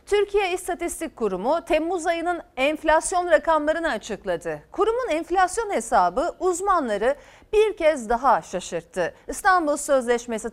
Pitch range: 235-360 Hz